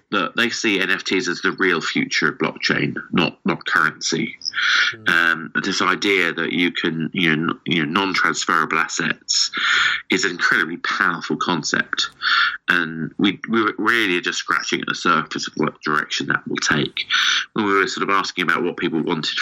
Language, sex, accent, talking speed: English, male, British, 175 wpm